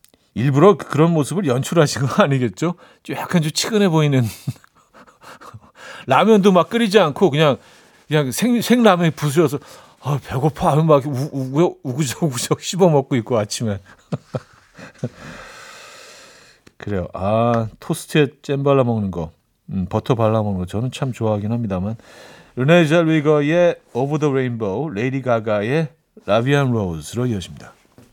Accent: native